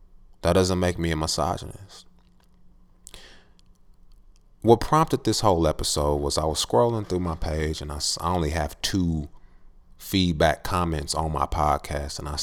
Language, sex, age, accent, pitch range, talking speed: English, male, 30-49, American, 75-90 Hz, 145 wpm